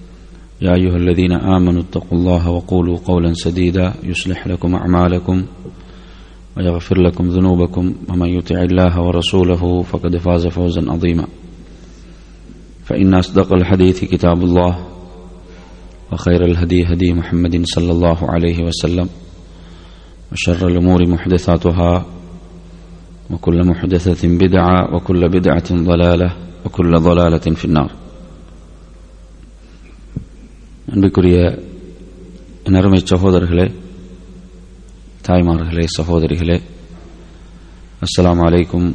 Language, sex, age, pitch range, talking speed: English, male, 30-49, 85-90 Hz, 90 wpm